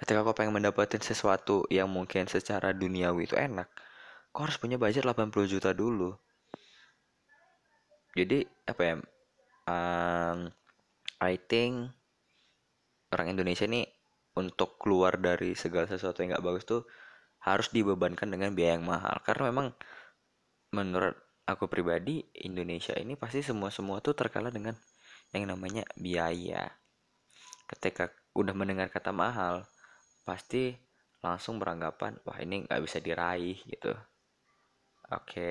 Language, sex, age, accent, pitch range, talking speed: Indonesian, male, 20-39, native, 85-105 Hz, 120 wpm